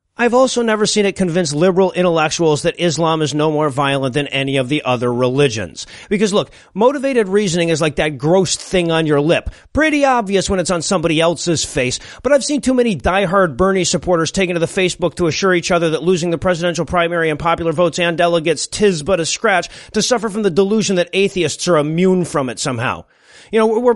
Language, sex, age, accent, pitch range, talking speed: English, male, 40-59, American, 165-205 Hz, 215 wpm